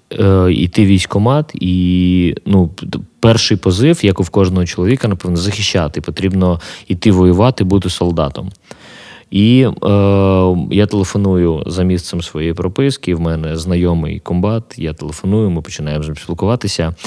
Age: 20-39